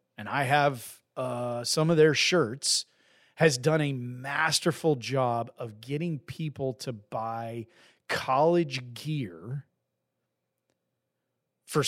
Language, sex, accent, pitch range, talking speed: English, male, American, 120-155 Hz, 105 wpm